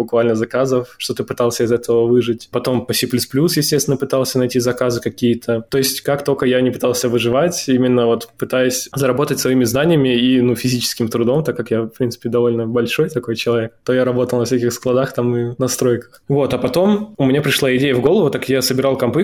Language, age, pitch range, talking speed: Russian, 20-39, 120-135 Hz, 205 wpm